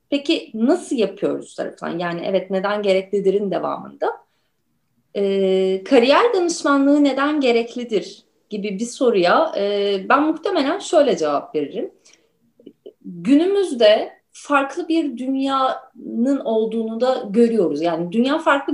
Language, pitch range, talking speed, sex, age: Turkish, 205-285 Hz, 105 wpm, female, 30-49